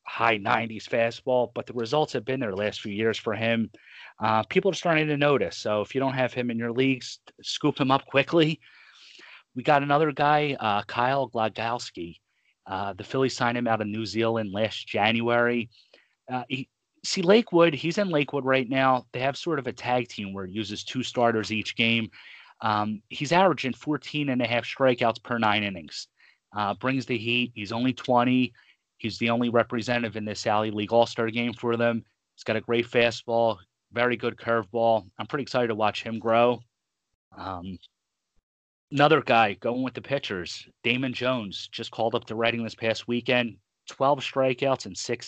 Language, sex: English, male